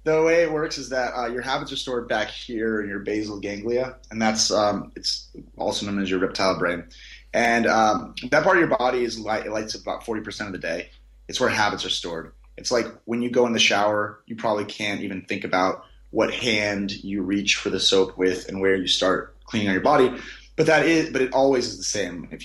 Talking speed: 250 wpm